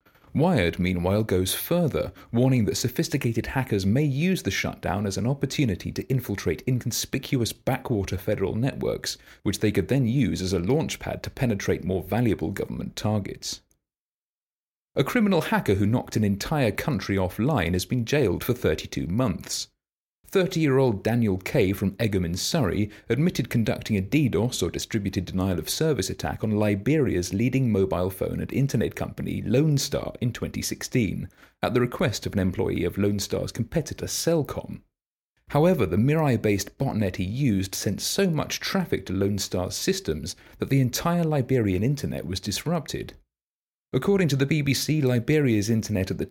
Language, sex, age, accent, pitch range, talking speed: English, male, 30-49, British, 95-135 Hz, 145 wpm